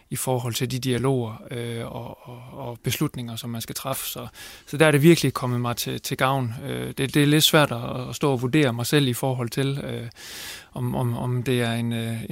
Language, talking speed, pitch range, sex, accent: Danish, 230 wpm, 120-150 Hz, male, native